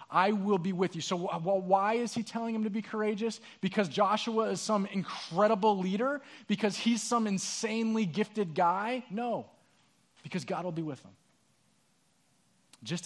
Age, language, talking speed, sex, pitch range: 30-49, English, 155 wpm, male, 175-220 Hz